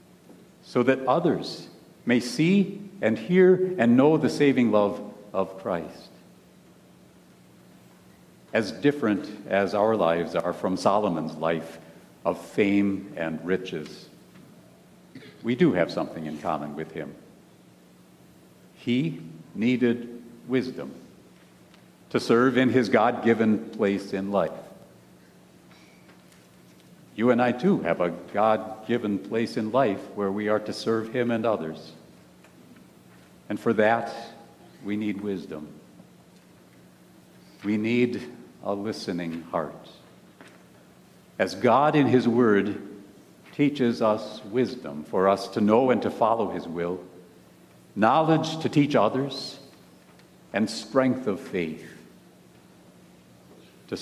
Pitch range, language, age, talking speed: 80-120 Hz, English, 60-79, 110 wpm